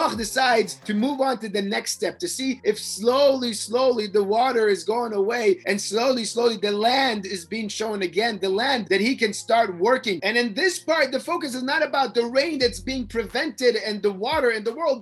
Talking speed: 215 wpm